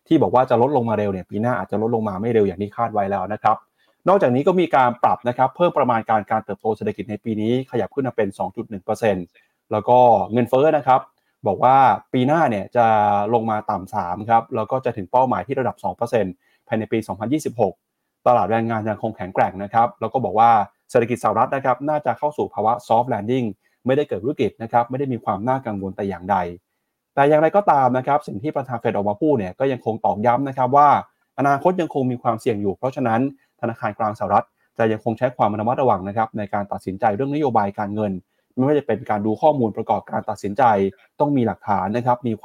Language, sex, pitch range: Thai, male, 105-130 Hz